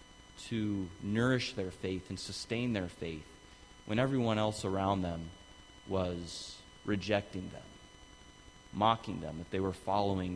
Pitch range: 90-110 Hz